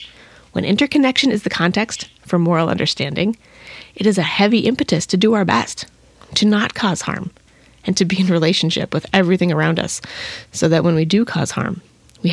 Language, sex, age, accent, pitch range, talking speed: English, female, 30-49, American, 165-210 Hz, 185 wpm